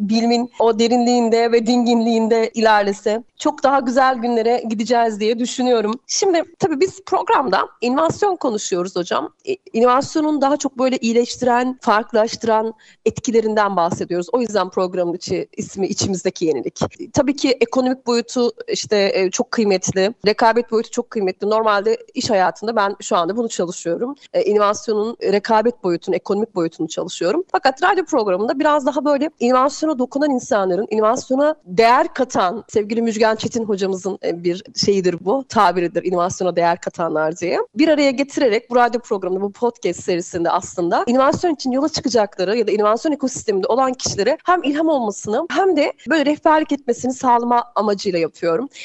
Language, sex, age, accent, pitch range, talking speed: Turkish, female, 30-49, native, 210-285 Hz, 145 wpm